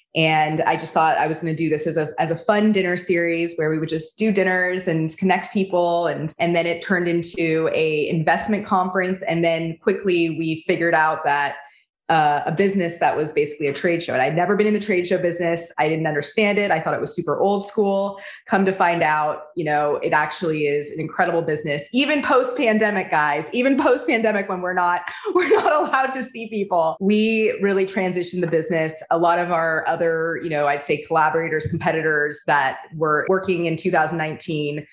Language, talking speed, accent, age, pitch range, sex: English, 205 wpm, American, 20-39, 155-195 Hz, female